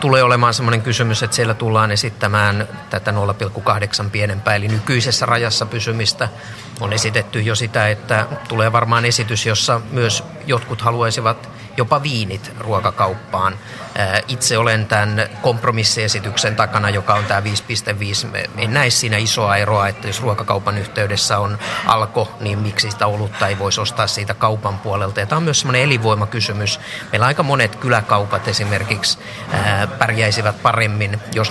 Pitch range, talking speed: 105-120 Hz, 145 wpm